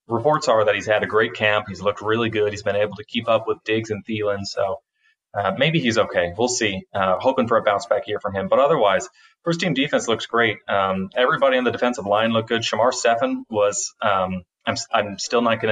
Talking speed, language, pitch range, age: 235 wpm, English, 100-115 Hz, 30-49